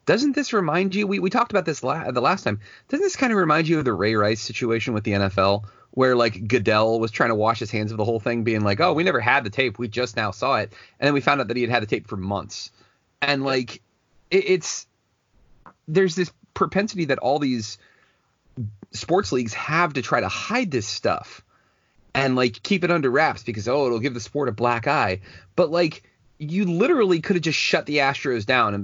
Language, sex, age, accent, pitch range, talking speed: English, male, 30-49, American, 110-150 Hz, 240 wpm